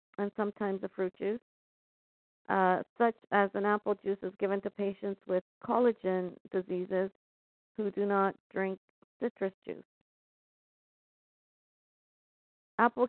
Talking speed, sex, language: 115 wpm, female, English